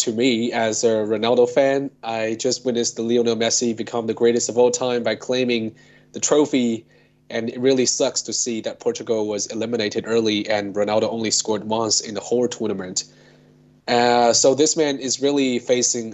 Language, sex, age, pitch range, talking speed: English, male, 20-39, 105-125 Hz, 180 wpm